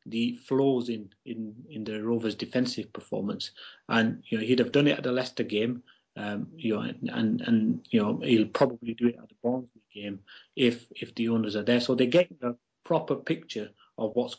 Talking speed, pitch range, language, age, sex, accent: 210 wpm, 115-140 Hz, English, 30-49, male, British